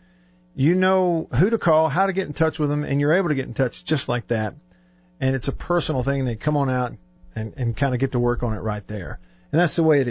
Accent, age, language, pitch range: American, 50-69, English, 115-155 Hz